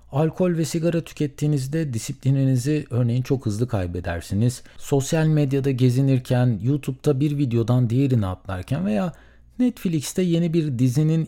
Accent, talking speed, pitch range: native, 115 wpm, 100-160 Hz